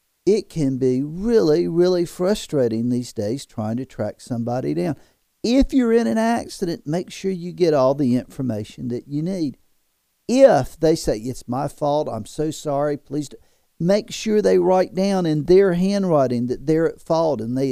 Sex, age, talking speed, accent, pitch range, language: male, 50-69, 175 wpm, American, 140-180 Hz, English